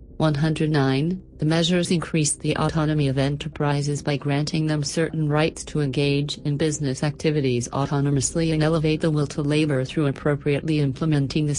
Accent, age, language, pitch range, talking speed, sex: American, 40-59, English, 140-155 Hz, 150 wpm, female